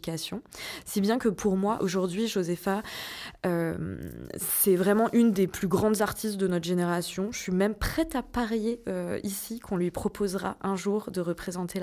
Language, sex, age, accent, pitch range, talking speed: French, female, 20-39, French, 175-215 Hz, 170 wpm